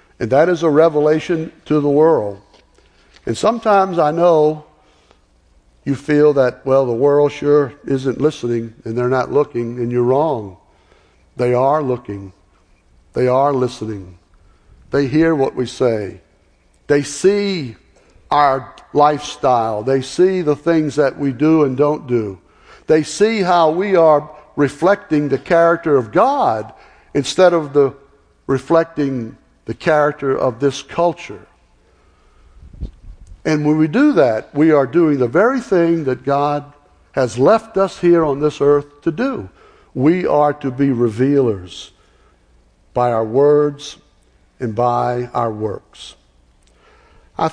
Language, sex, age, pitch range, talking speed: English, male, 60-79, 120-165 Hz, 135 wpm